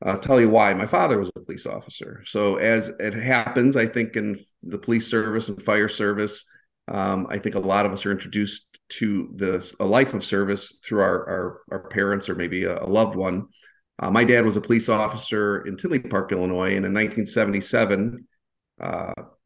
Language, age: English, 40-59